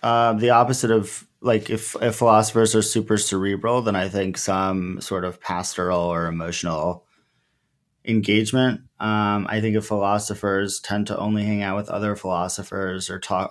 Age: 30-49